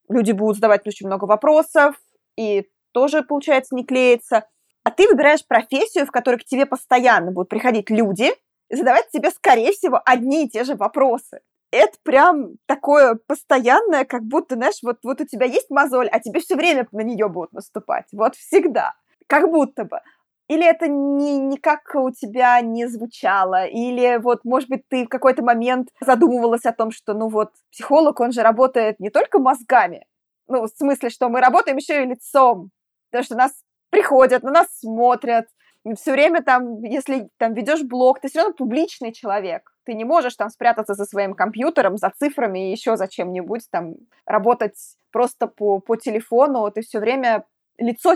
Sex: female